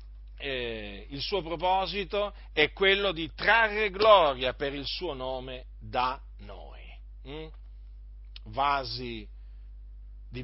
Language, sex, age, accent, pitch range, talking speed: Italian, male, 50-69, native, 130-195 Hz, 105 wpm